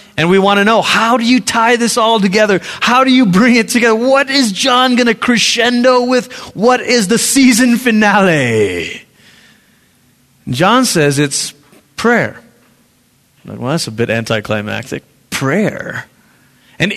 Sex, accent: male, American